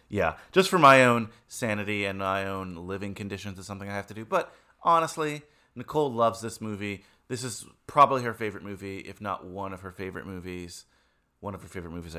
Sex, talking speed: male, 200 wpm